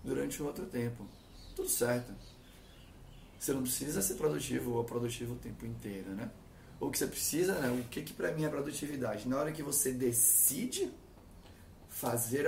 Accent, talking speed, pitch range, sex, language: Brazilian, 170 wpm, 115-135 Hz, male, Portuguese